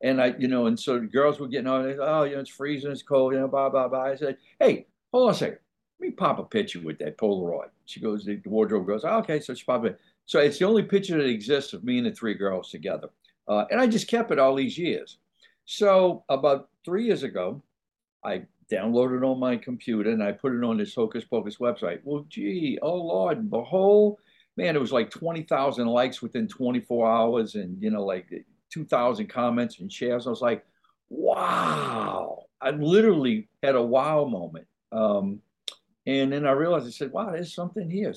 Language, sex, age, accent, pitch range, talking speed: English, male, 60-79, American, 120-185 Hz, 210 wpm